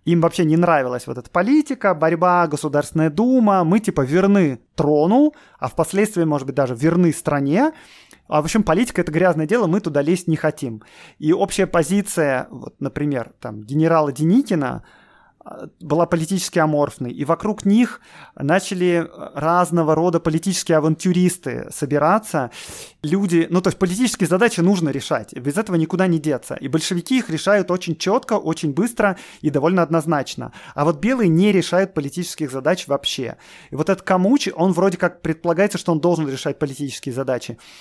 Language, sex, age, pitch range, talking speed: Russian, male, 30-49, 155-185 Hz, 160 wpm